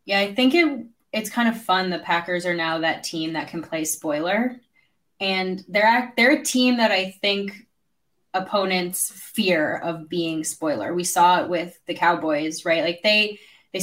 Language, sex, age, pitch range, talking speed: English, female, 10-29, 165-210 Hz, 180 wpm